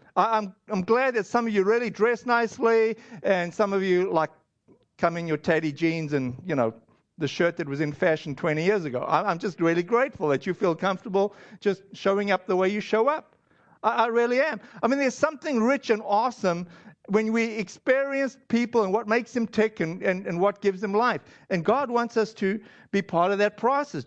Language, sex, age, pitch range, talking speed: English, male, 50-69, 170-220 Hz, 210 wpm